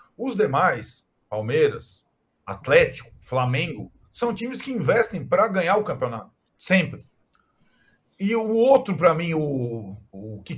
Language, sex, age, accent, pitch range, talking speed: Portuguese, male, 40-59, Brazilian, 135-230 Hz, 115 wpm